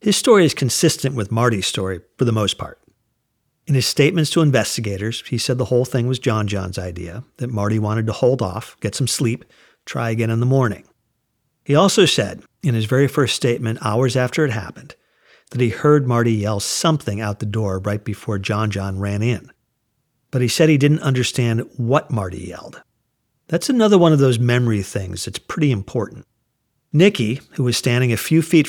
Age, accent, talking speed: 50-69, American, 190 wpm